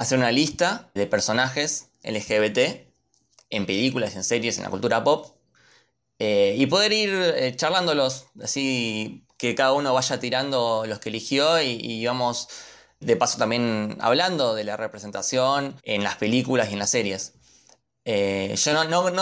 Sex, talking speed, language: male, 155 wpm, Spanish